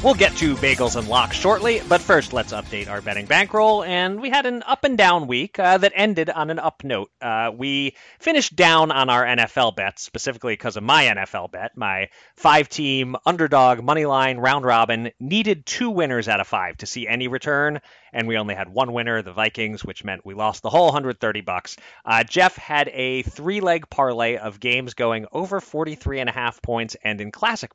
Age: 30-49